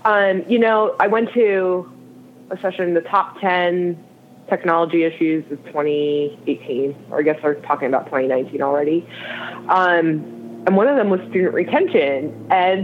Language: English